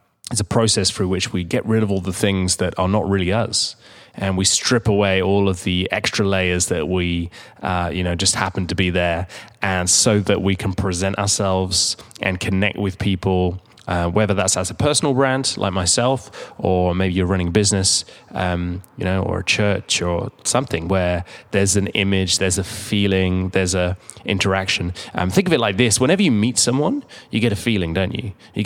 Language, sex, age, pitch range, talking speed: English, male, 20-39, 95-110 Hz, 205 wpm